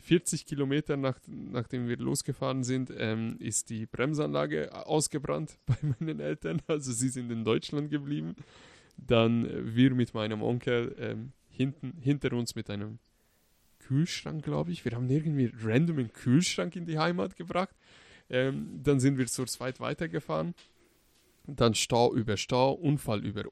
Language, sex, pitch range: German, male, 110-140 Hz